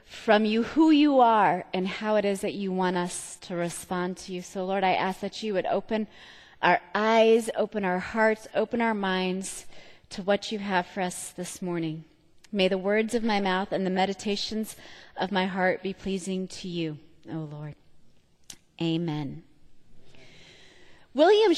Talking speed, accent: 170 wpm, American